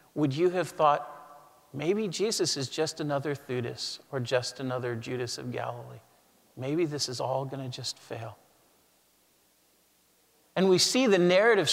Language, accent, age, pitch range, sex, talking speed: English, American, 50-69, 125-160 Hz, male, 150 wpm